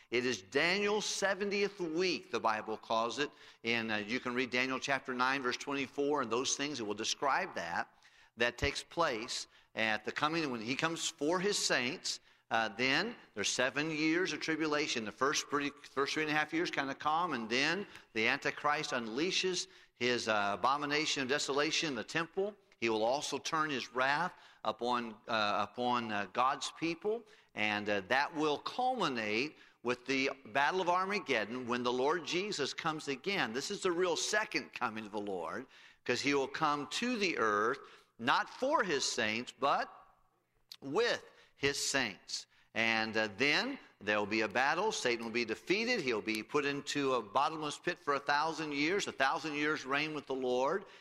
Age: 50-69